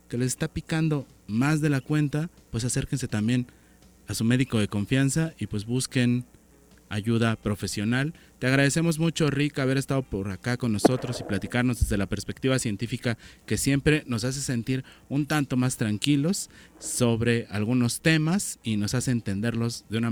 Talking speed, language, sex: 165 wpm, Spanish, male